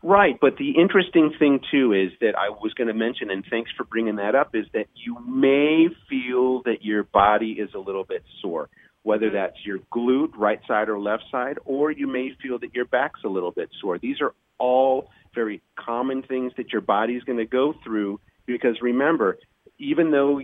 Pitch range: 110-130 Hz